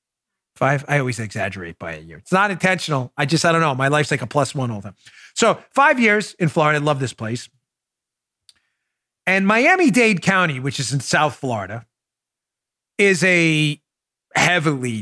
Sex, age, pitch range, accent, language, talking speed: male, 40-59, 140-205 Hz, American, English, 175 wpm